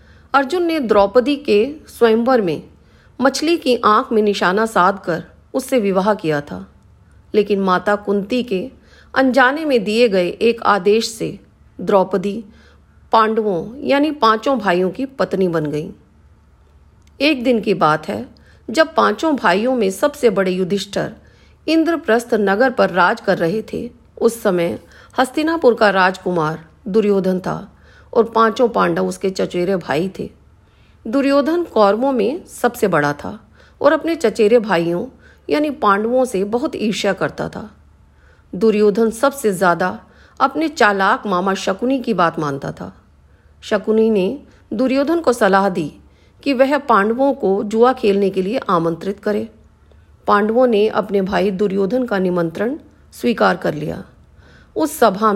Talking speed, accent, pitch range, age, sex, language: 135 wpm, native, 180-245 Hz, 40-59, female, Hindi